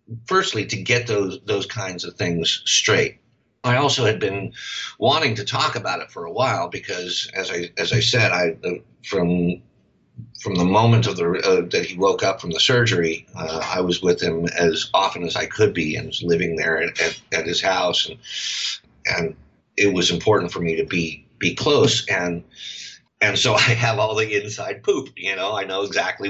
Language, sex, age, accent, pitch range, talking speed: English, male, 50-69, American, 100-125 Hz, 200 wpm